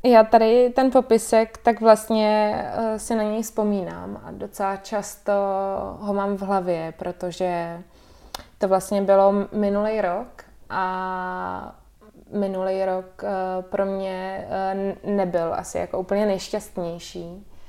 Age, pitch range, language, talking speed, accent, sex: 20-39, 185-205 Hz, Czech, 110 wpm, native, female